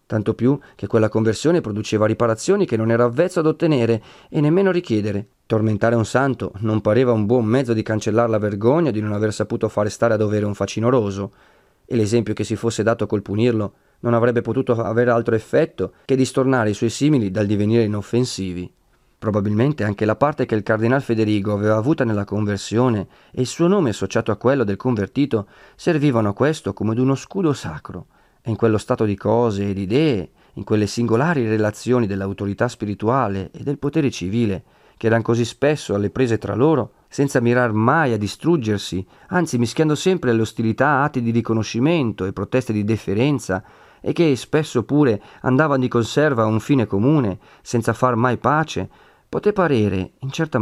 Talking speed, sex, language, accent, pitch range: 180 wpm, male, Italian, native, 105-135 Hz